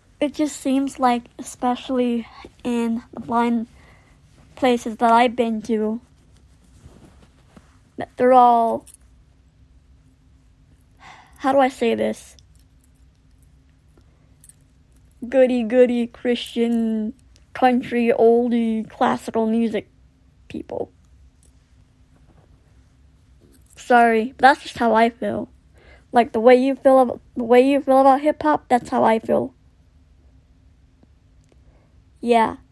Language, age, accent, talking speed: English, 30-49, American, 100 wpm